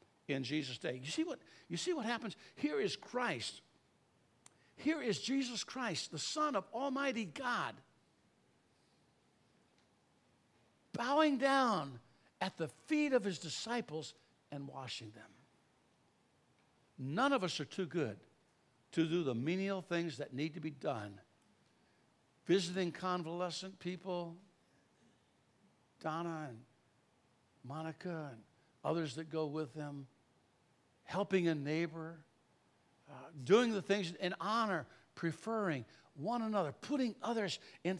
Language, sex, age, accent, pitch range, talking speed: English, male, 60-79, American, 160-235 Hz, 115 wpm